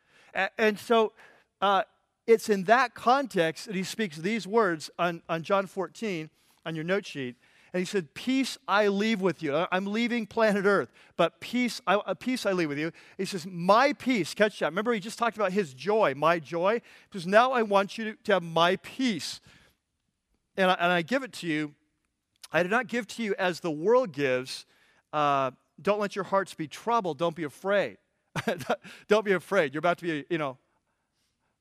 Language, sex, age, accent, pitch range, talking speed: English, male, 40-59, American, 165-215 Hz, 190 wpm